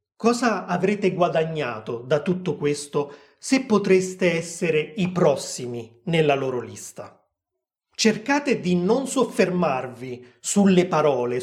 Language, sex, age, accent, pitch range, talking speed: Italian, male, 30-49, native, 160-195 Hz, 105 wpm